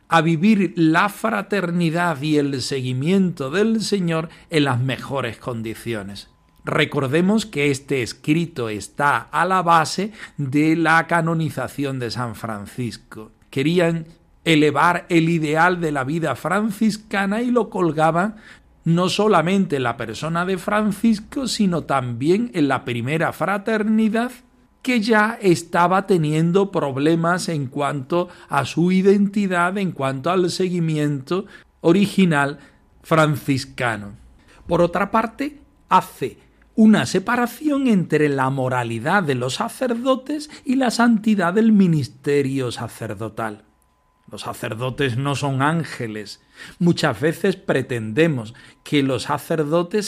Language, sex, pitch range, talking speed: Spanish, male, 135-195 Hz, 115 wpm